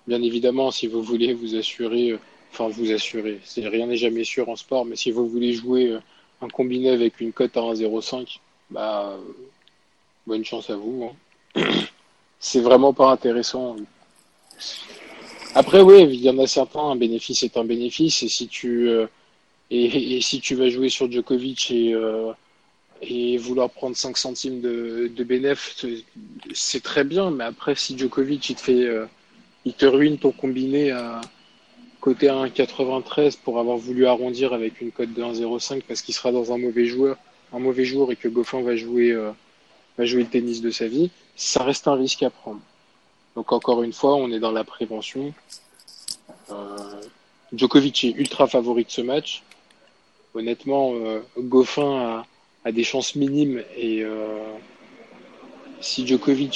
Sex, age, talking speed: male, 20-39, 170 wpm